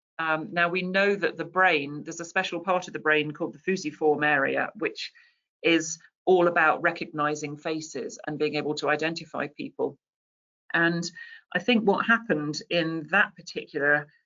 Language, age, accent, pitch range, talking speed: English, 40-59, British, 150-180 Hz, 160 wpm